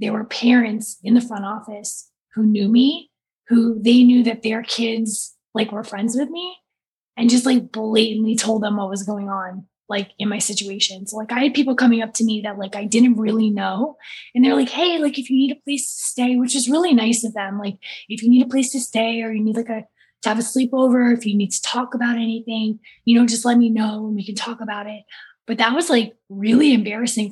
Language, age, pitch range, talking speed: English, 20-39, 205-240 Hz, 240 wpm